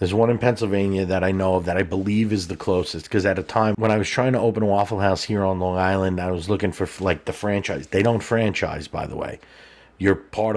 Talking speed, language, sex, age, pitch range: 260 wpm, English, male, 30-49, 95-110 Hz